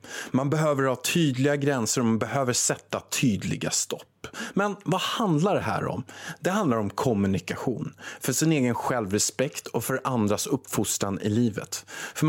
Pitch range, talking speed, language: 125-180 Hz, 155 wpm, Swedish